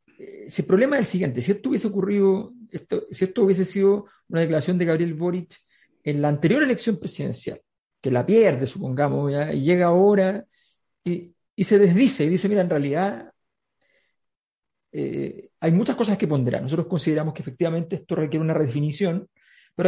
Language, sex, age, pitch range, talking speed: Spanish, male, 50-69, 150-200 Hz, 175 wpm